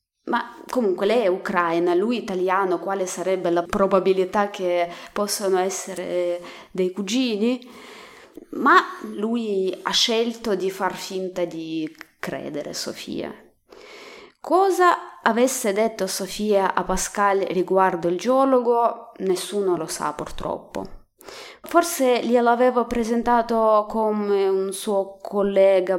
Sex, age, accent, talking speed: female, 20-39, native, 110 wpm